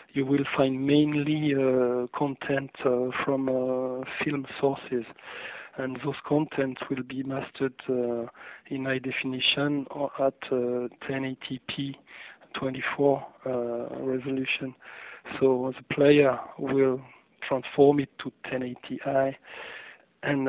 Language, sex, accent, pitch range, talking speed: English, male, French, 130-140 Hz, 105 wpm